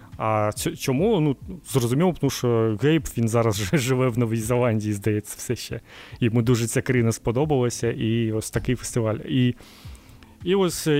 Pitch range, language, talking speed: 110-135 Hz, Ukrainian, 165 wpm